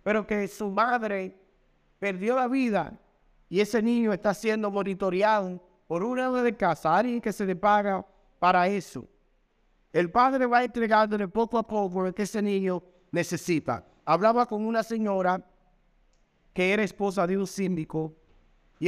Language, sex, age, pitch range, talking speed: Spanish, male, 50-69, 170-215 Hz, 150 wpm